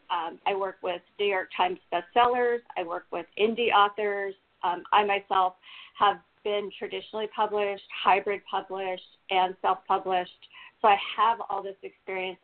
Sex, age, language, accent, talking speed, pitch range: female, 40-59, English, American, 145 wpm, 185-220 Hz